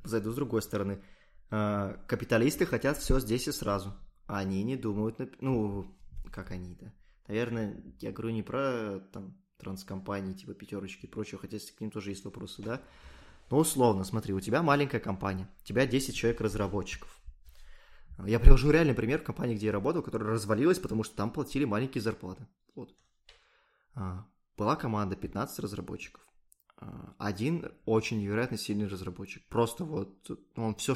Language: Russian